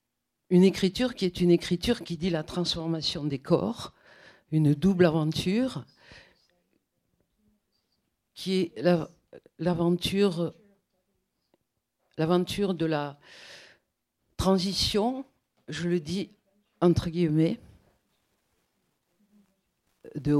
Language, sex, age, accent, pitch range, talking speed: French, female, 50-69, French, 155-195 Hz, 85 wpm